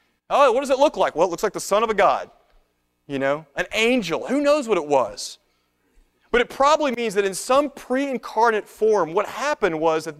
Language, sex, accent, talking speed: English, male, American, 220 wpm